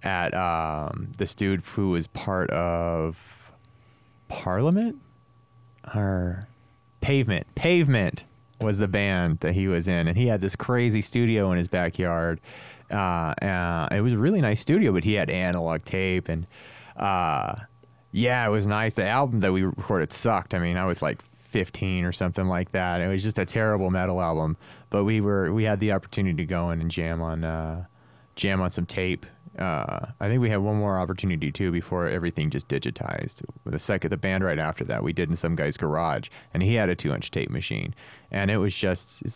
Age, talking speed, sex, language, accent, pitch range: 30-49, 190 wpm, male, English, American, 90-110 Hz